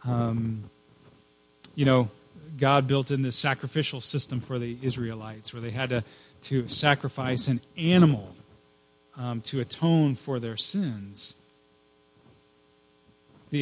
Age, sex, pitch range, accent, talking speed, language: 30-49, male, 115-145 Hz, American, 120 wpm, English